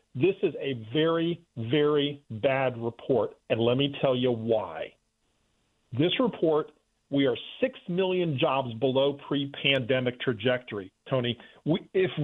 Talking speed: 125 wpm